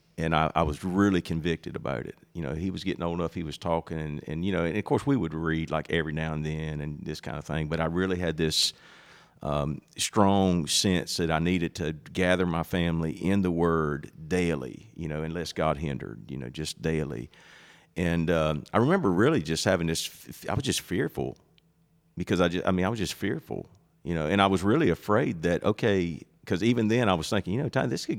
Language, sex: English, male